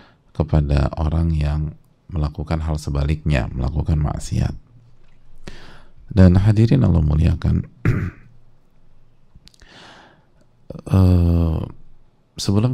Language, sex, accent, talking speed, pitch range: English, male, Indonesian, 65 wpm, 75-95 Hz